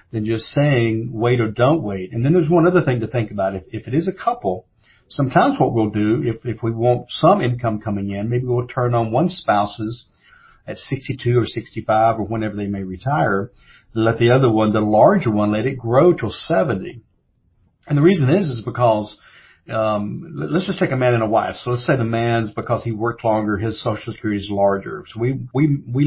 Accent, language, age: American, English, 50-69